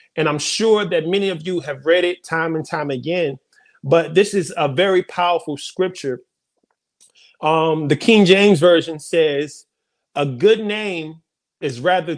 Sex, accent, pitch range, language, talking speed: male, American, 165-210 Hz, English, 160 wpm